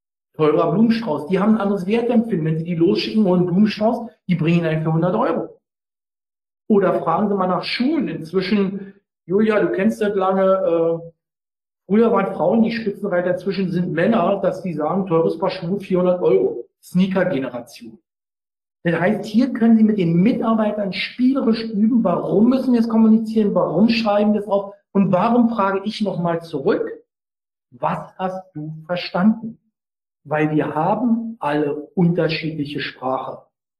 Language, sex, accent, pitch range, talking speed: German, male, German, 165-220 Hz, 150 wpm